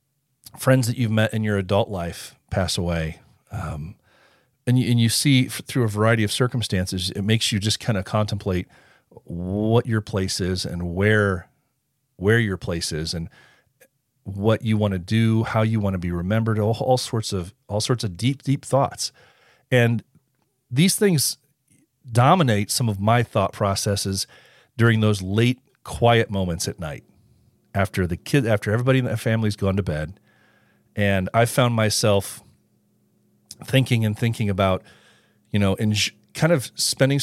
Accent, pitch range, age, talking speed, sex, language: American, 95-120 Hz, 40-59, 165 wpm, male, English